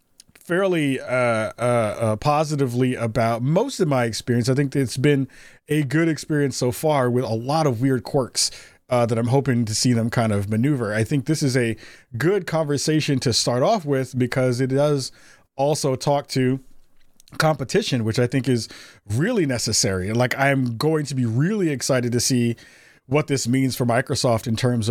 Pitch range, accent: 120-140 Hz, American